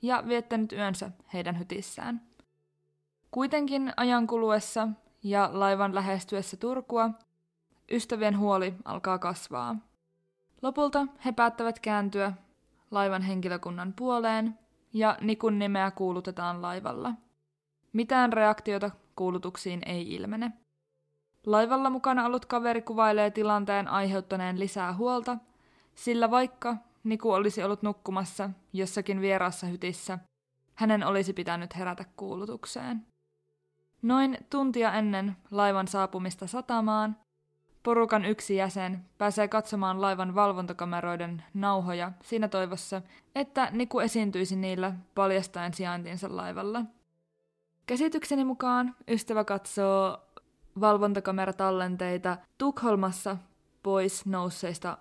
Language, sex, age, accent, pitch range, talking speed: Finnish, female, 20-39, native, 185-225 Hz, 95 wpm